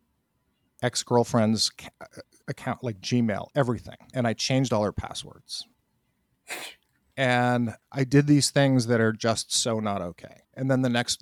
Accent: American